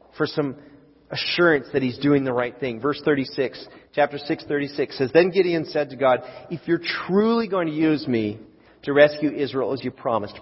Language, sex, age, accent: English, male, 40-59, American